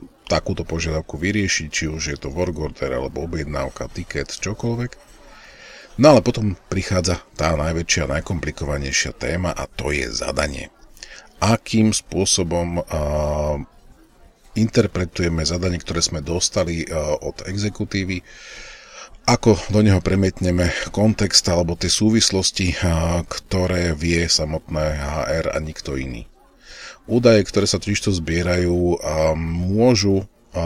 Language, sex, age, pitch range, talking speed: Slovak, male, 40-59, 80-95 Hz, 115 wpm